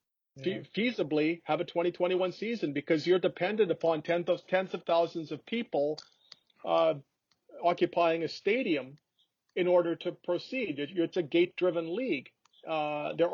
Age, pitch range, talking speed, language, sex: 40-59, 155-180 Hz, 140 wpm, English, male